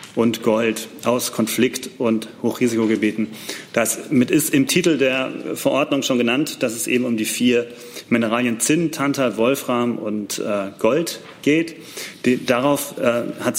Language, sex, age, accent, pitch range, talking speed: German, male, 30-49, German, 120-140 Hz, 130 wpm